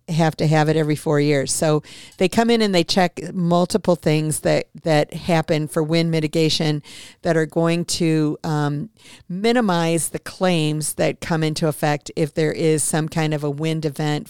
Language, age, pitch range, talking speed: English, 50-69, 155-175 Hz, 180 wpm